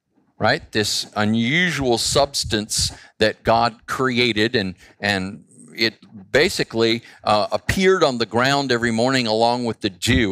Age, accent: 50-69, American